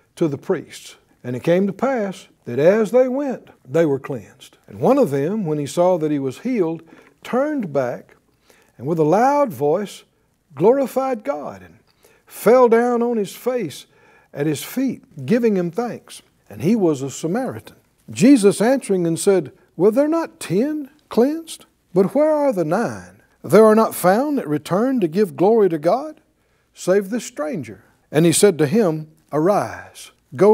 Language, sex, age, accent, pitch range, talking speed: English, male, 60-79, American, 145-225 Hz, 175 wpm